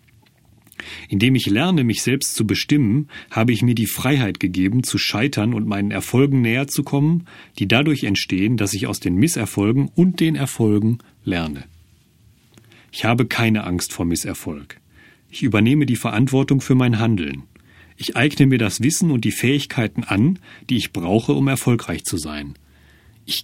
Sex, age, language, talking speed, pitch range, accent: male, 40-59, German, 160 wpm, 100-135 Hz, German